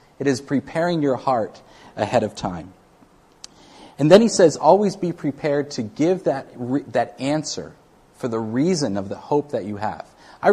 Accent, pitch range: American, 110-150 Hz